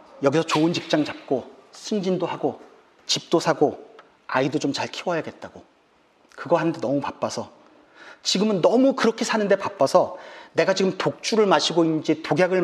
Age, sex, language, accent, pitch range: 40-59, male, Korean, native, 155-235 Hz